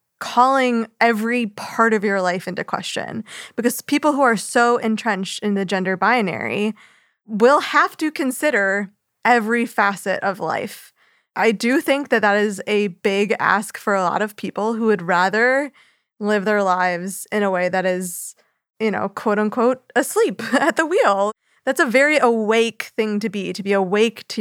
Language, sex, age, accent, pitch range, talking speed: English, female, 20-39, American, 190-230 Hz, 170 wpm